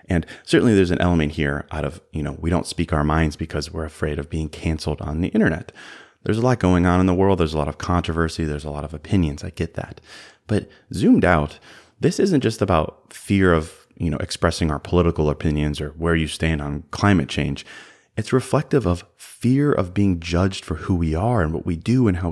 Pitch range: 80-95 Hz